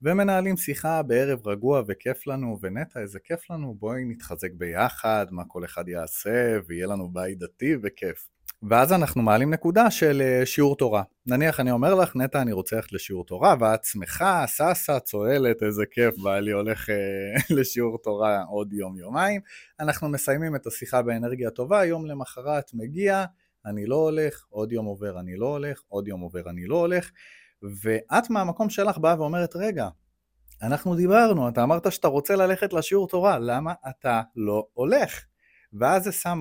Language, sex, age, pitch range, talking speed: Hebrew, male, 30-49, 105-155 Hz, 165 wpm